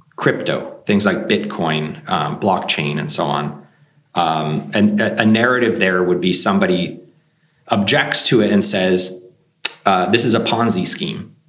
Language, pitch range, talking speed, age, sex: Danish, 95-150 Hz, 145 wpm, 30-49, male